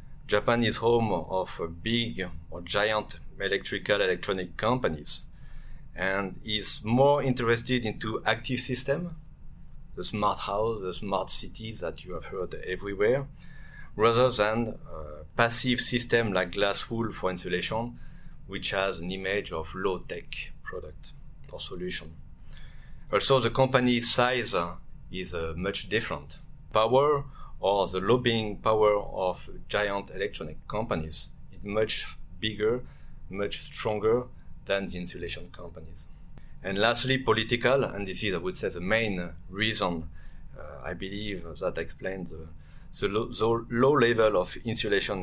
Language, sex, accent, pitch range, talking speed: French, male, French, 90-115 Hz, 130 wpm